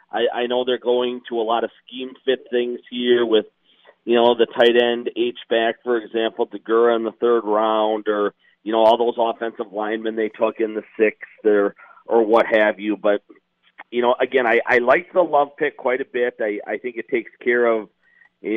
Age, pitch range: 40-59, 110-120 Hz